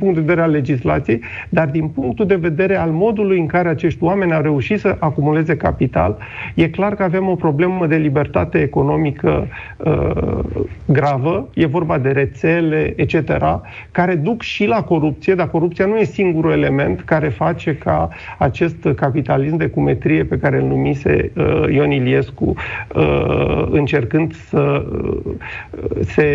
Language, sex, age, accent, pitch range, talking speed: Romanian, male, 50-69, native, 140-175 Hz, 155 wpm